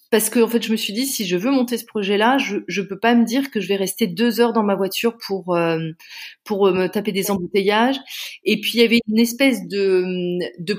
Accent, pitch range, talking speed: French, 180-235 Hz, 250 wpm